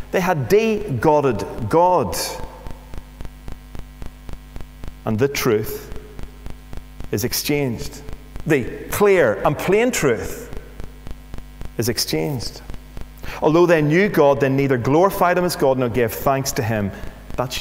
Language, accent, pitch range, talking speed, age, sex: English, British, 120-185 Hz, 110 wpm, 30-49, male